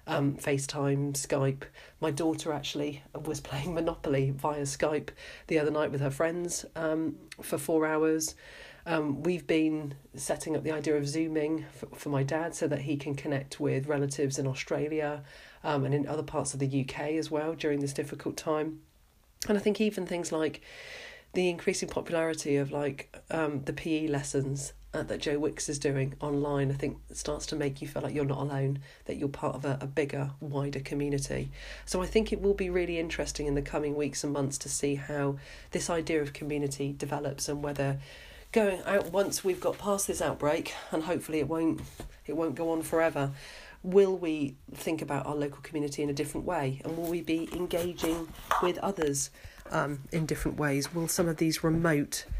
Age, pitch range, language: 40-59, 140-165 Hz, English